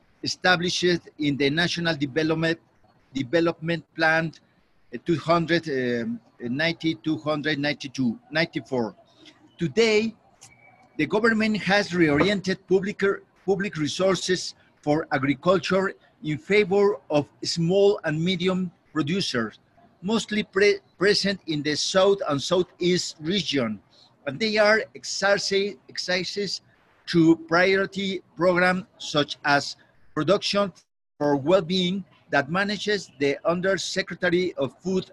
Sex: male